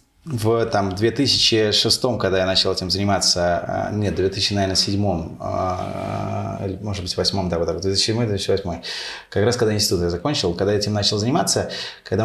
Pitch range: 95-115 Hz